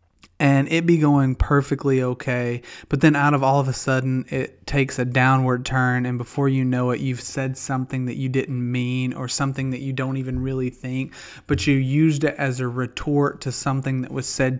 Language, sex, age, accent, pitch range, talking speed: English, male, 30-49, American, 130-145 Hz, 210 wpm